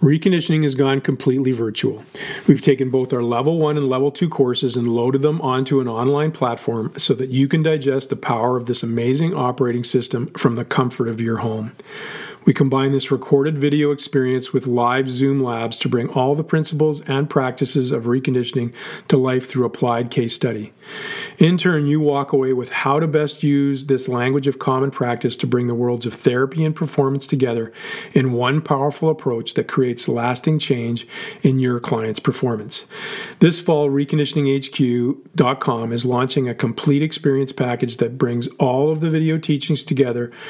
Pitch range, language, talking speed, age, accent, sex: 125-150 Hz, English, 175 wpm, 40-59, American, male